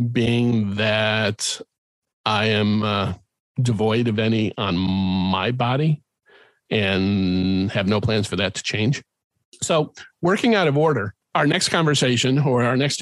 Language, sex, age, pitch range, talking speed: English, male, 40-59, 105-130 Hz, 140 wpm